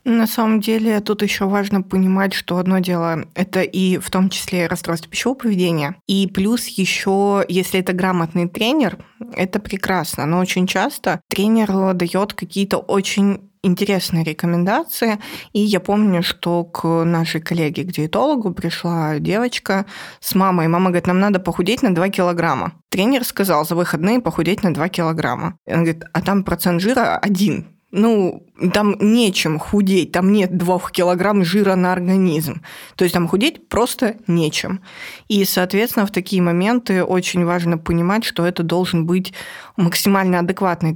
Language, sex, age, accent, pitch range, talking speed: Russian, female, 20-39, native, 175-205 Hz, 150 wpm